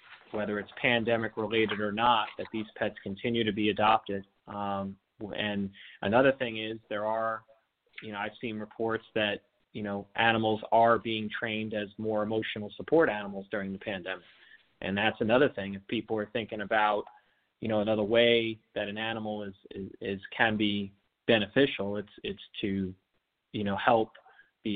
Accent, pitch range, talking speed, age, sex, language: American, 100-115 Hz, 165 wpm, 30-49, male, English